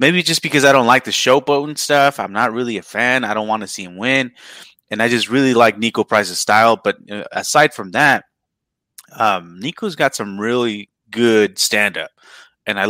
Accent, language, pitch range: American, English, 100-125 Hz